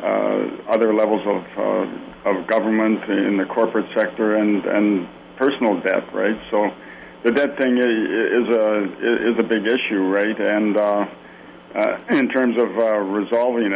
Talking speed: 155 wpm